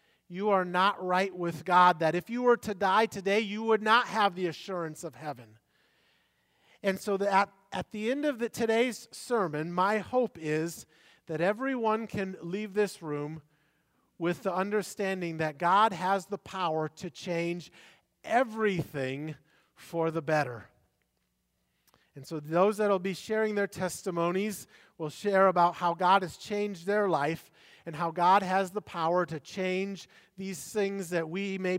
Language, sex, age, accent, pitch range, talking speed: English, male, 40-59, American, 170-220 Hz, 155 wpm